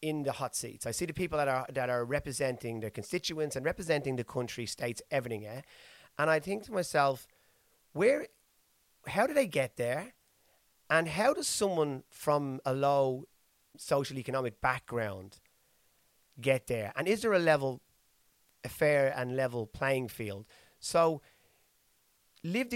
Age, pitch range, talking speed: 30-49, 125-155 Hz, 155 wpm